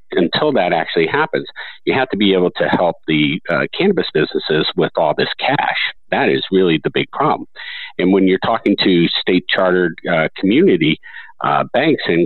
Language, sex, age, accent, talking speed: English, male, 50-69, American, 180 wpm